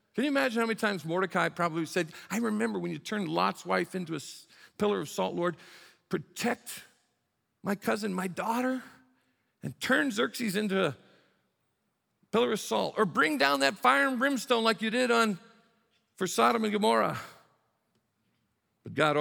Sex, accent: male, American